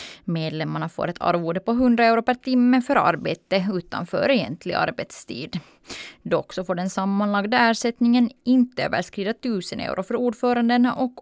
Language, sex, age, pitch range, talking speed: Swedish, female, 20-39, 180-235 Hz, 145 wpm